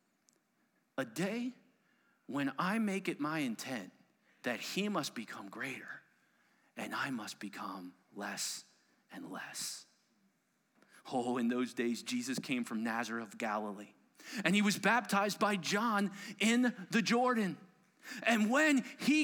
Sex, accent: male, American